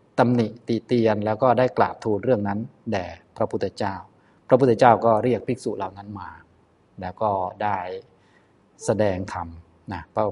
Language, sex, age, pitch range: Thai, male, 20-39, 100-120 Hz